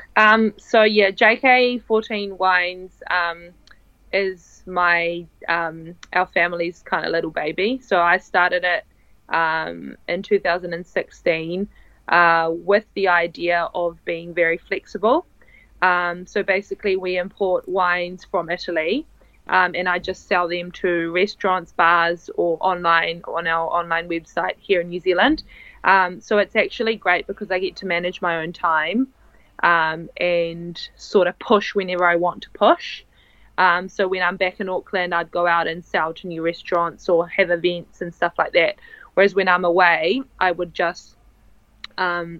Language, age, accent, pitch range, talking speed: English, 20-39, Australian, 170-195 Hz, 155 wpm